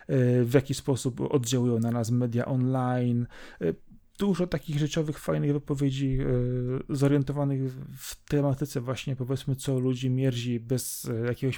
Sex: male